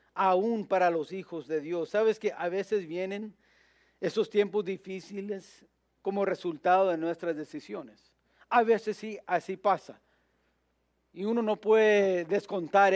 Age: 50-69